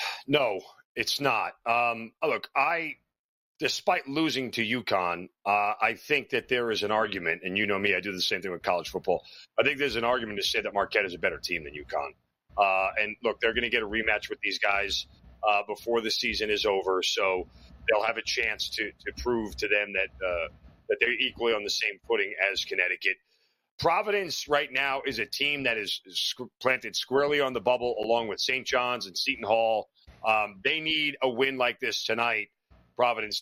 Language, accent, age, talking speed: English, American, 40-59, 205 wpm